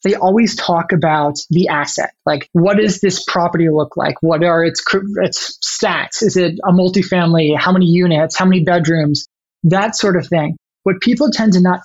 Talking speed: 185 wpm